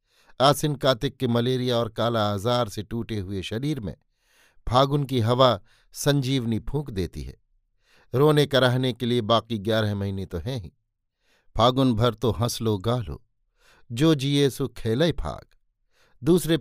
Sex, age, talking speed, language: male, 50-69, 150 wpm, Hindi